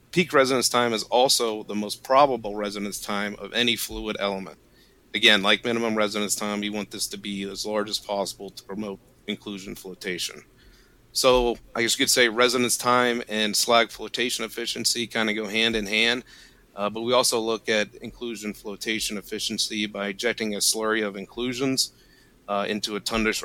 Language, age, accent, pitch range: English, 40-59, American, 105-120 Hz